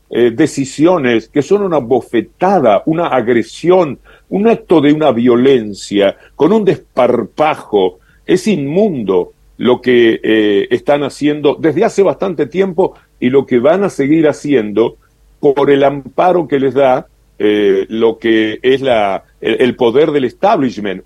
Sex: male